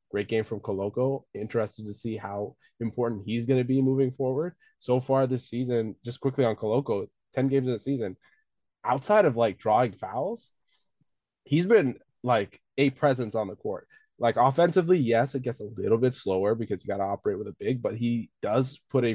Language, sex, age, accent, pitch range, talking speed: English, male, 20-39, American, 110-135 Hz, 195 wpm